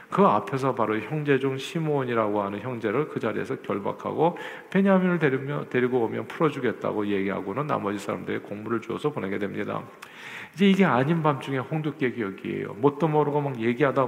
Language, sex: Korean, male